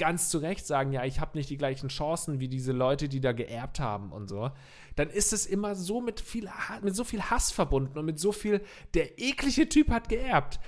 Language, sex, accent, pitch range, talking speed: German, male, German, 125-165 Hz, 235 wpm